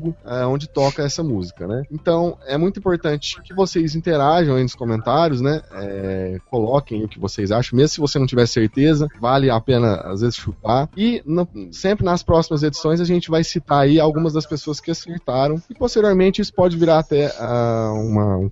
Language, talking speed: Portuguese, 195 wpm